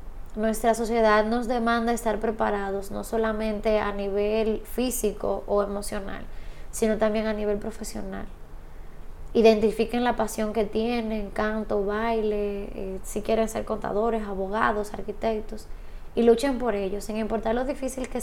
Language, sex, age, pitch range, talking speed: Spanish, female, 20-39, 205-230 Hz, 130 wpm